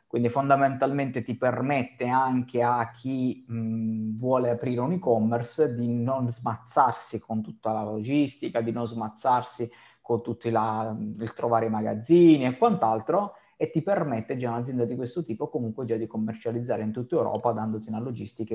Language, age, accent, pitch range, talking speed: Italian, 20-39, native, 115-150 Hz, 160 wpm